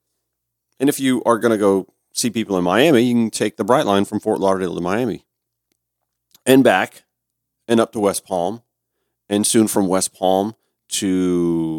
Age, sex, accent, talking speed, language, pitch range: 40-59, male, American, 180 wpm, English, 95-120 Hz